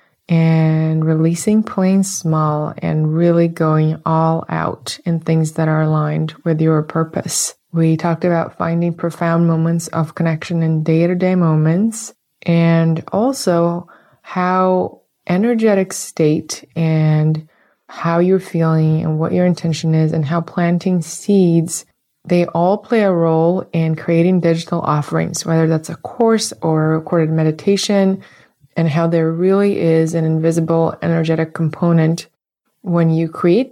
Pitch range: 160-175 Hz